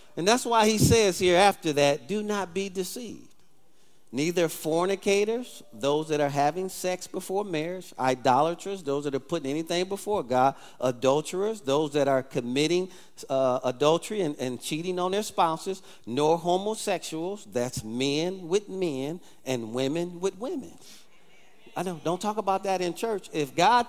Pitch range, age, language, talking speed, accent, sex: 150-220 Hz, 40-59, English, 155 wpm, American, male